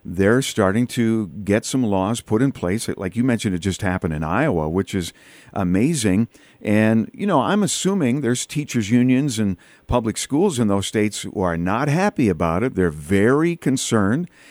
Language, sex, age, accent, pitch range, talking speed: English, male, 50-69, American, 100-125 Hz, 180 wpm